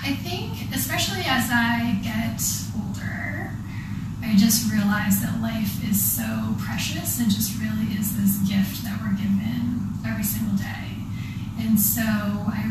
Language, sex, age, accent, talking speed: English, female, 10-29, American, 140 wpm